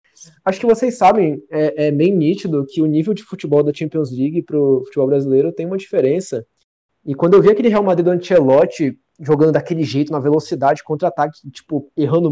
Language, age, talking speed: Portuguese, 20-39, 190 wpm